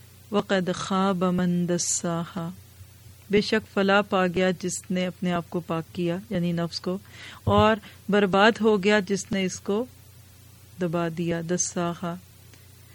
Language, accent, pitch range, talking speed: English, Indian, 175-205 Hz, 105 wpm